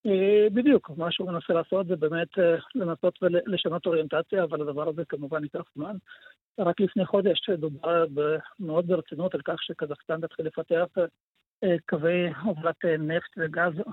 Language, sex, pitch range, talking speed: Hebrew, male, 155-185 Hz, 135 wpm